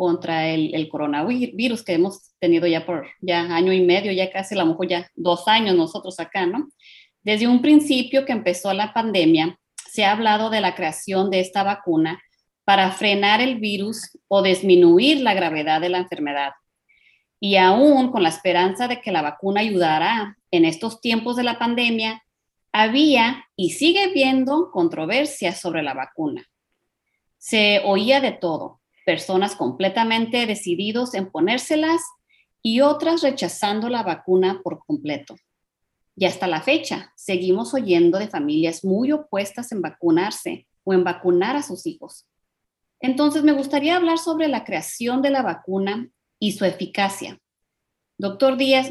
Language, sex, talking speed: Spanish, female, 150 wpm